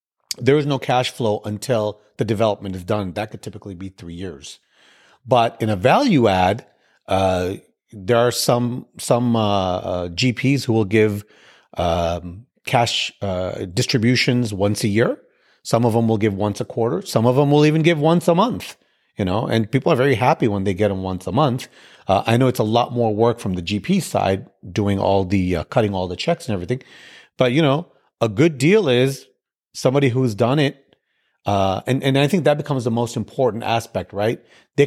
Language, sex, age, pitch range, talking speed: English, male, 40-59, 105-130 Hz, 200 wpm